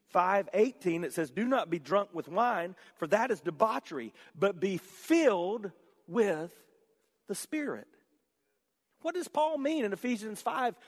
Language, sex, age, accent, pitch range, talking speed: English, male, 40-59, American, 205-300 Hz, 145 wpm